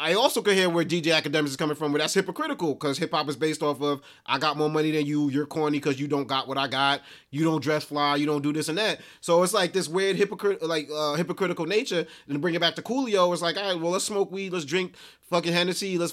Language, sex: English, male